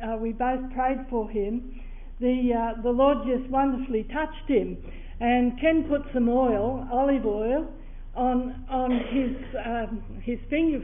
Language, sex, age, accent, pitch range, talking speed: English, female, 60-79, Australian, 235-275 Hz, 150 wpm